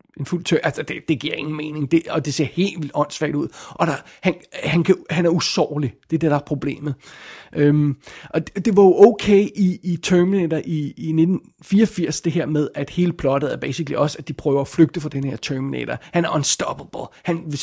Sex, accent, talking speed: male, native, 225 wpm